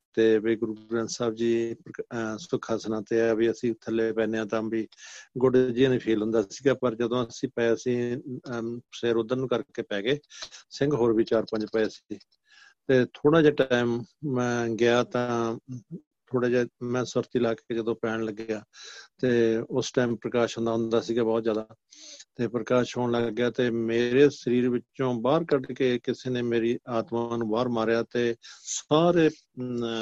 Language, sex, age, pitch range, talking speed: Punjabi, male, 50-69, 115-125 Hz, 160 wpm